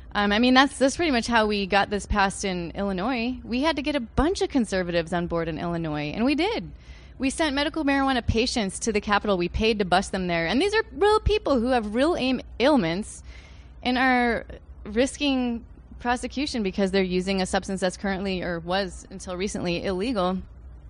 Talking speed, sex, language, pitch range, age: 195 wpm, female, English, 185-245 Hz, 20-39